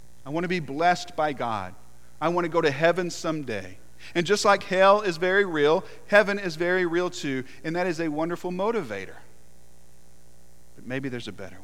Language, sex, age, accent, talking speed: English, male, 40-59, American, 190 wpm